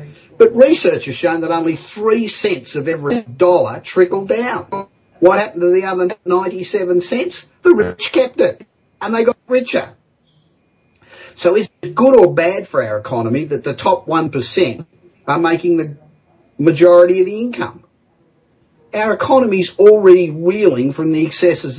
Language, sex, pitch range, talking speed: English, male, 130-195 Hz, 155 wpm